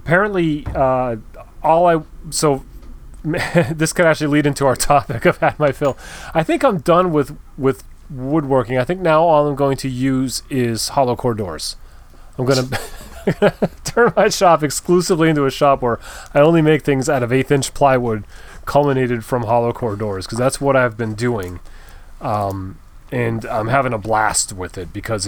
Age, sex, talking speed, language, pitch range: 30-49, male, 170 wpm, English, 110-145 Hz